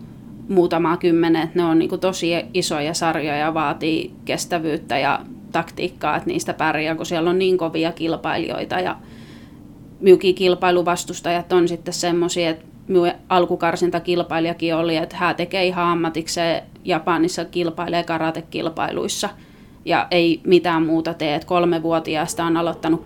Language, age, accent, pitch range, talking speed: Finnish, 30-49, native, 165-175 Hz, 120 wpm